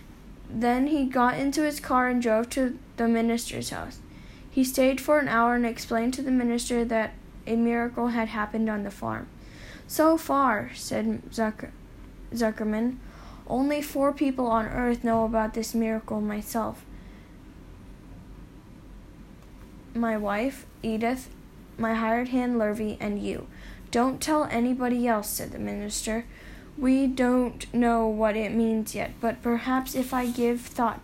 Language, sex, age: English, female, 10-29